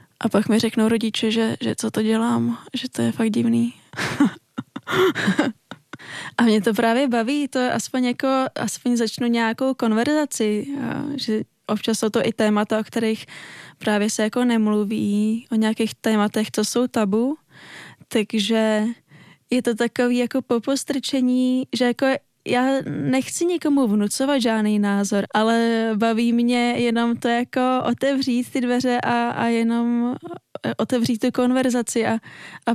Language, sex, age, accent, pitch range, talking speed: Czech, female, 20-39, native, 225-255 Hz, 145 wpm